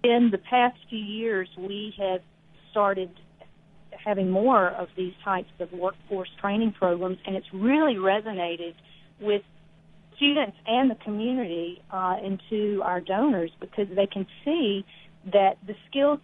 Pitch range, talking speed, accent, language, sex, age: 185-230 Hz, 140 wpm, American, English, female, 40-59